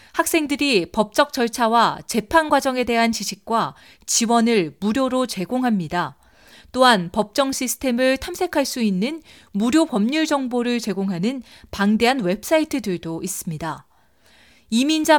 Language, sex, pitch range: Korean, female, 200-275 Hz